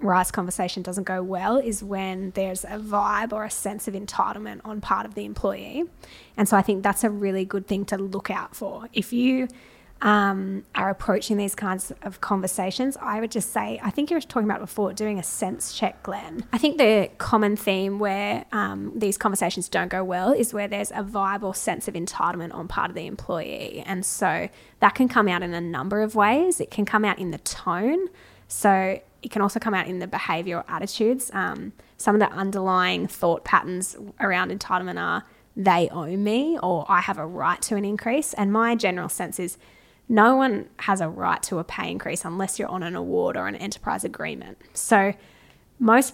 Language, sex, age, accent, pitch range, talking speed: English, female, 10-29, Australian, 185-220 Hz, 205 wpm